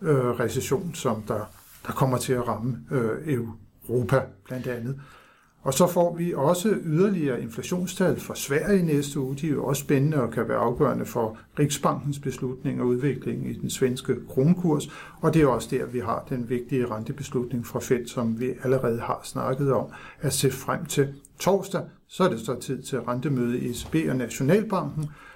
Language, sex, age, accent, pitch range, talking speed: Danish, male, 60-79, native, 130-155 Hz, 175 wpm